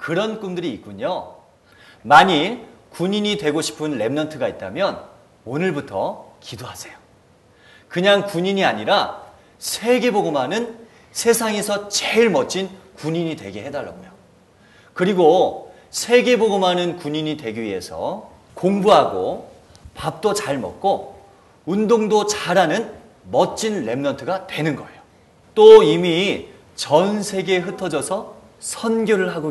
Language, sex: Korean, male